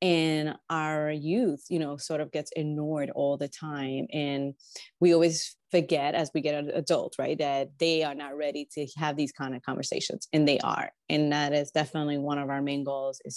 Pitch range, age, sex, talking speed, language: 145-170 Hz, 30-49, female, 205 wpm, English